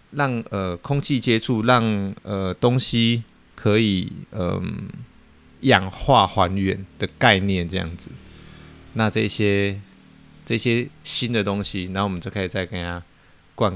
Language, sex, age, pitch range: Chinese, male, 20-39, 90-115 Hz